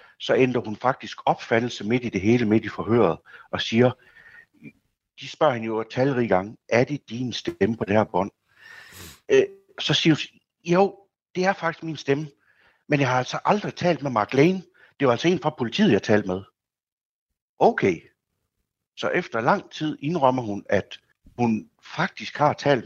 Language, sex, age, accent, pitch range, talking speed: Danish, male, 60-79, native, 95-130 Hz, 180 wpm